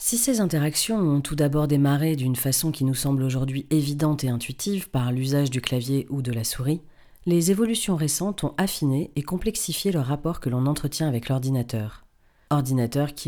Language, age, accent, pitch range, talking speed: French, 40-59, French, 130-165 Hz, 185 wpm